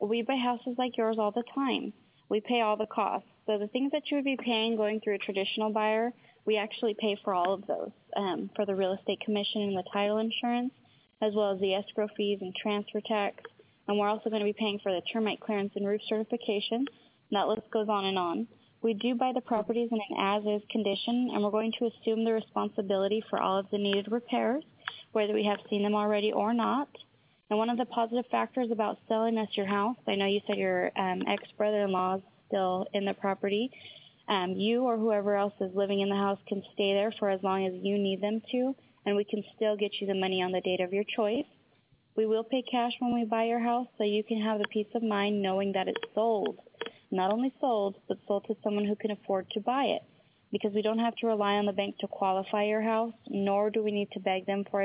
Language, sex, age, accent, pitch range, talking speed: English, female, 20-39, American, 200-225 Hz, 235 wpm